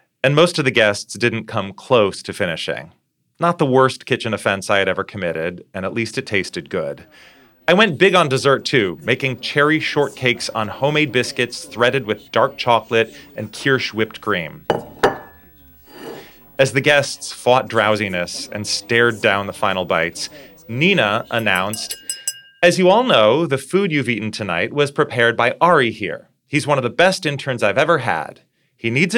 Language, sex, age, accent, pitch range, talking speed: English, male, 30-49, American, 110-150 Hz, 170 wpm